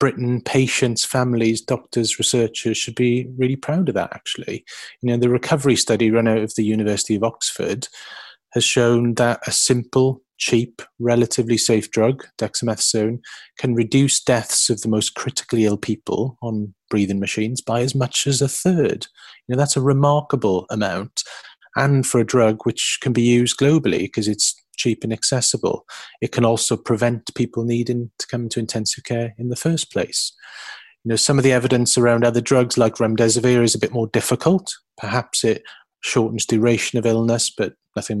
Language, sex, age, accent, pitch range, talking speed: English, male, 30-49, British, 115-130 Hz, 175 wpm